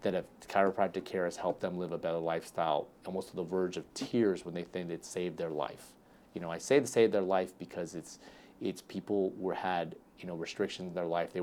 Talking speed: 235 wpm